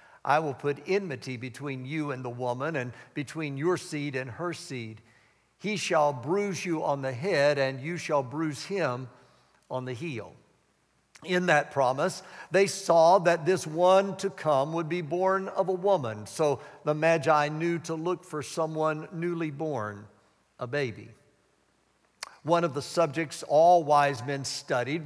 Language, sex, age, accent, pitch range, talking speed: English, male, 60-79, American, 140-180 Hz, 160 wpm